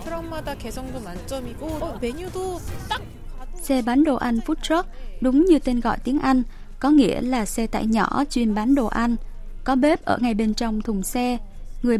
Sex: female